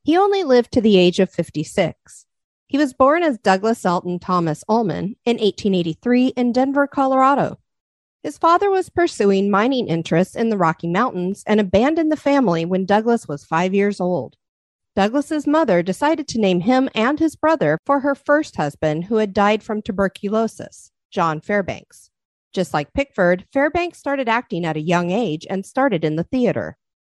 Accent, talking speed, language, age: American, 170 wpm, English, 40-59